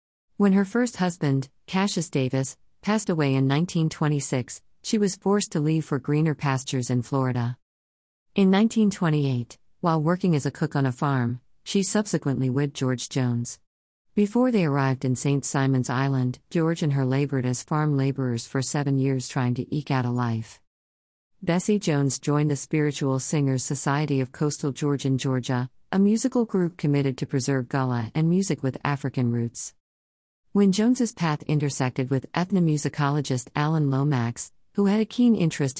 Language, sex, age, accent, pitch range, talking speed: English, female, 50-69, American, 130-160 Hz, 160 wpm